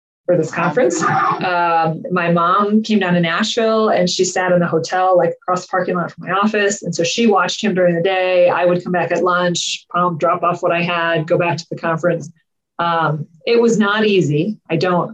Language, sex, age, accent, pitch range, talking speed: English, female, 20-39, American, 165-200 Hz, 220 wpm